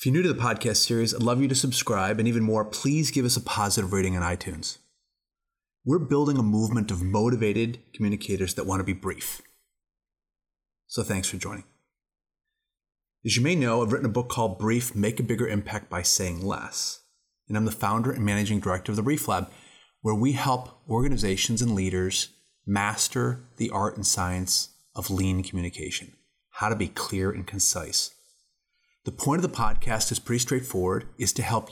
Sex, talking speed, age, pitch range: male, 185 wpm, 30-49, 100-125 Hz